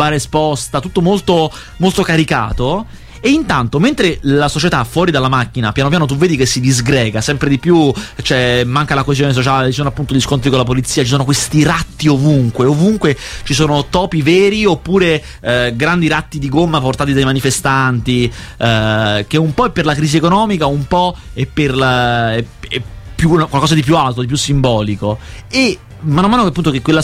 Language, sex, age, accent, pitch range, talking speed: Italian, male, 30-49, native, 130-175 Hz, 180 wpm